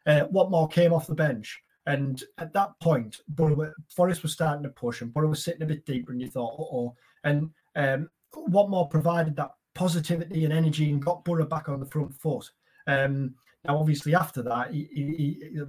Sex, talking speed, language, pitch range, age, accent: male, 205 wpm, English, 135-165 Hz, 30-49, British